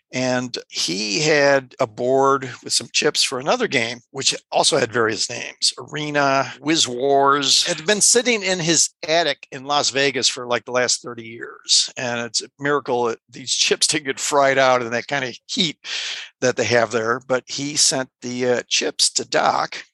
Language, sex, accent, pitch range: English, male, American, 125-150 Hz